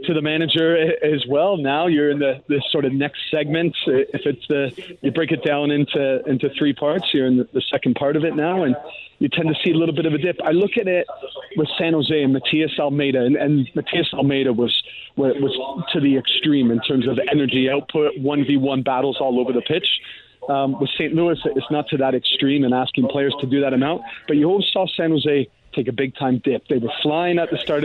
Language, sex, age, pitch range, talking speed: English, male, 30-49, 135-155 Hz, 235 wpm